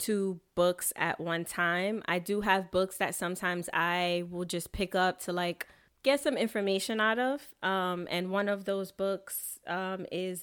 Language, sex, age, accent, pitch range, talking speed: English, female, 20-39, American, 180-220 Hz, 180 wpm